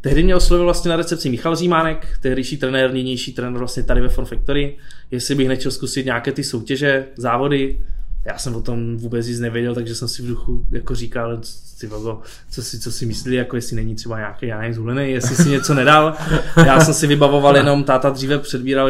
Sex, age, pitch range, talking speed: male, 20-39, 125-145 Hz, 205 wpm